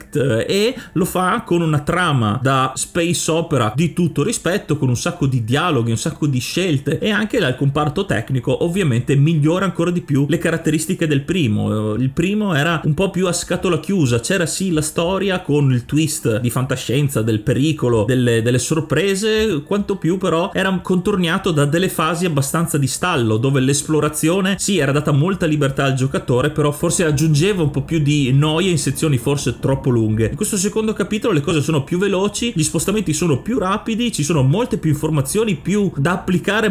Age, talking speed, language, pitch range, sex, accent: 30-49, 185 wpm, Italian, 135-180 Hz, male, native